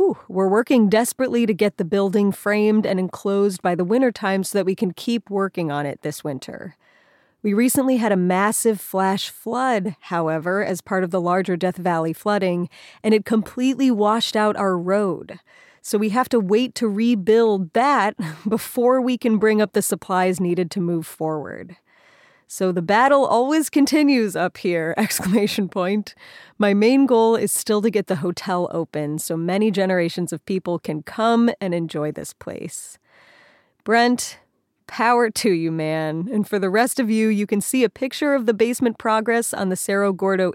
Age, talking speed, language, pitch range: 30-49, 175 wpm, English, 190-240 Hz